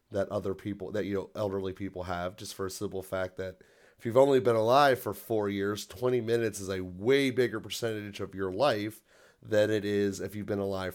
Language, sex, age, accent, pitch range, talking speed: English, male, 30-49, American, 95-120 Hz, 220 wpm